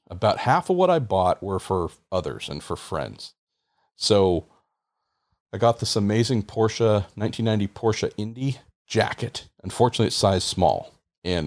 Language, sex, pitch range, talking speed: English, male, 85-105 Hz, 140 wpm